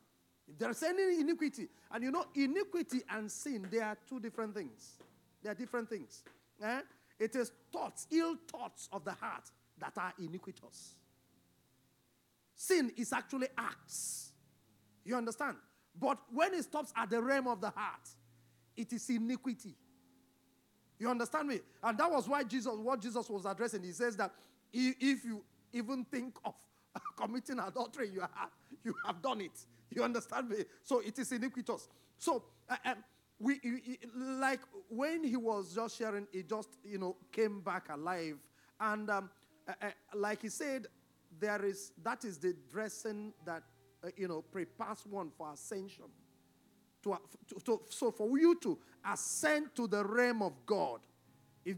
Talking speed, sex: 160 wpm, male